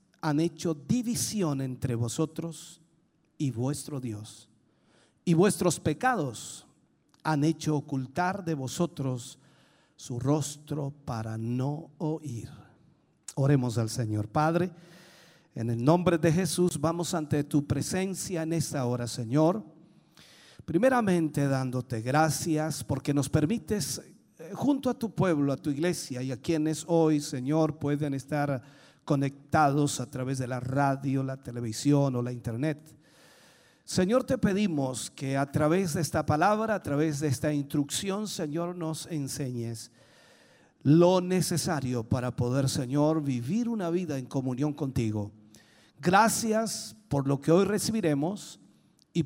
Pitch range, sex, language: 135-170 Hz, male, Spanish